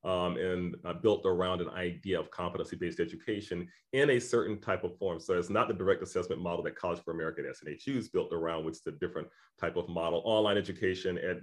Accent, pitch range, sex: American, 85-100 Hz, male